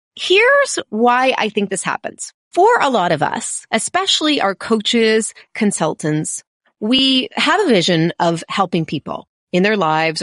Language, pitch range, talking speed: English, 170-245 Hz, 145 wpm